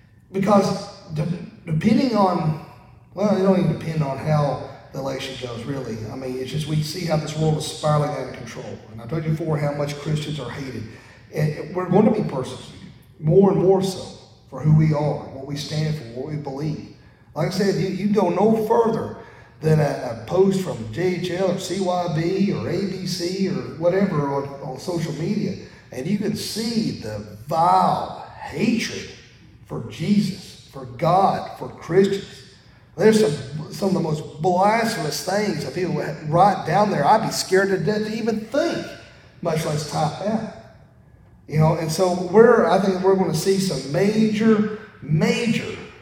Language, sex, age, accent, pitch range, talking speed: English, male, 40-59, American, 135-190 Hz, 175 wpm